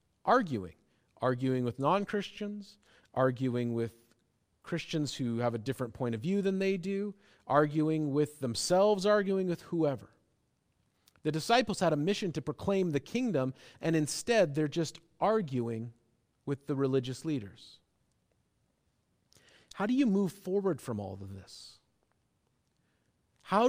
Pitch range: 120-170 Hz